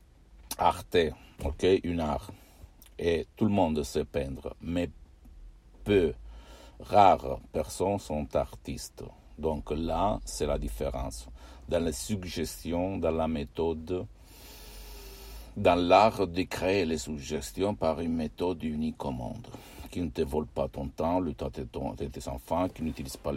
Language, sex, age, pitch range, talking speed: Italian, male, 60-79, 70-85 Hz, 140 wpm